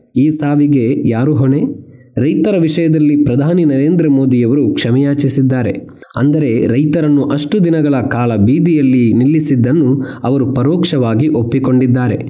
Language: Kannada